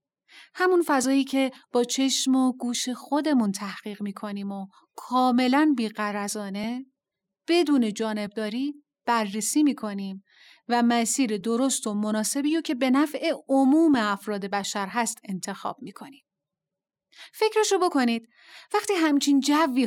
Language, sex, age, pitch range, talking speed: Persian, female, 30-49, 215-280 Hz, 110 wpm